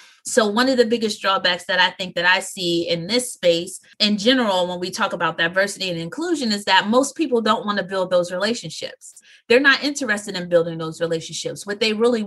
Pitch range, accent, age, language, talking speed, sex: 180-240 Hz, American, 30-49, English, 215 wpm, female